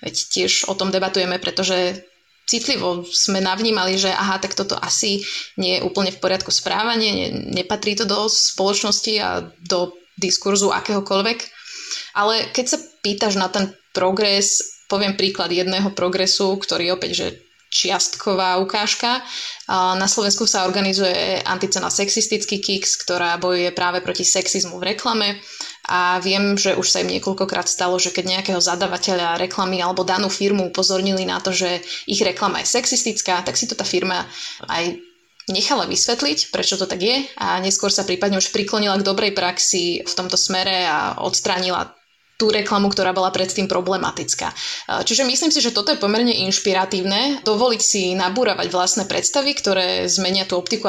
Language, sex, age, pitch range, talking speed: Slovak, female, 20-39, 185-220 Hz, 155 wpm